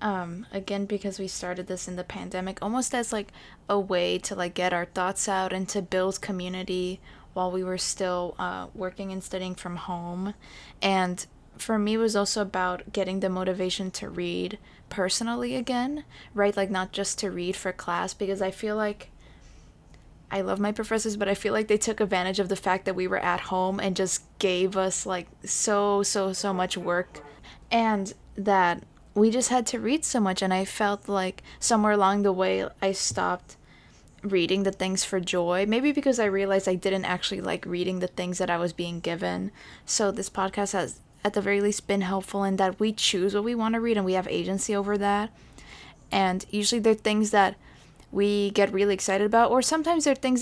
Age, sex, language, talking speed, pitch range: 20-39, female, English, 200 wpm, 185-205 Hz